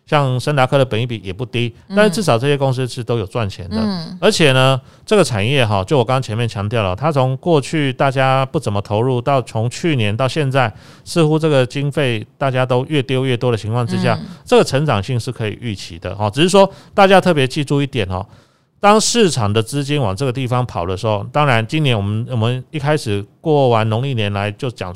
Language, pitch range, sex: Chinese, 115-150 Hz, male